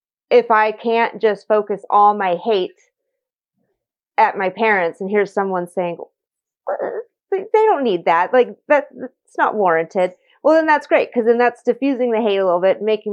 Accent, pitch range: American, 185-235 Hz